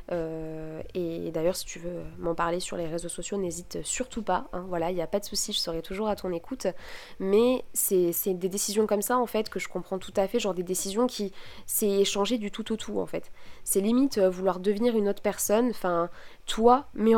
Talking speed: 235 wpm